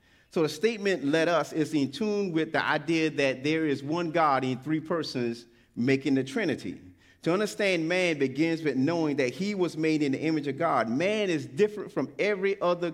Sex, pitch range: male, 135-170 Hz